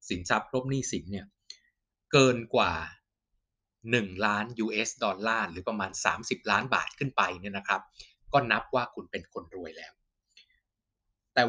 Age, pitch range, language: 20-39, 100-135 Hz, Thai